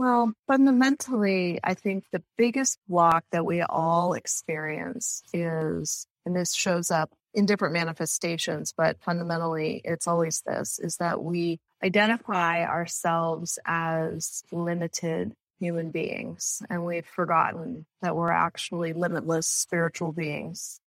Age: 30-49